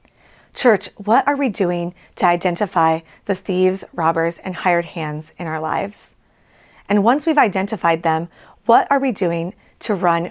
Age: 30-49